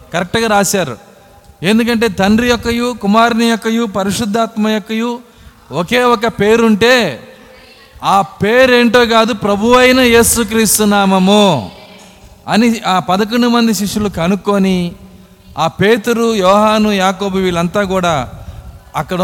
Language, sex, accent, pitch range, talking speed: Telugu, male, native, 165-215 Hz, 95 wpm